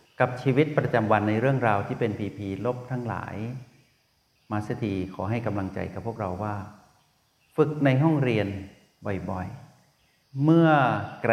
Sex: male